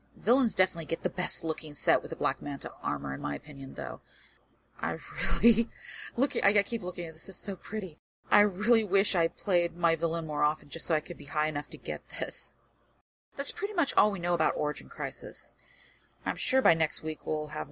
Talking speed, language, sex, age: 205 wpm, English, female, 30-49